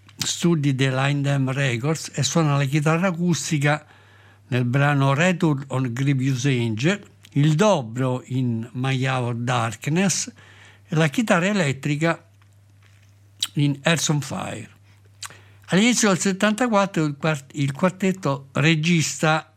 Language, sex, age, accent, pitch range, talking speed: Italian, male, 60-79, native, 120-165 Hz, 105 wpm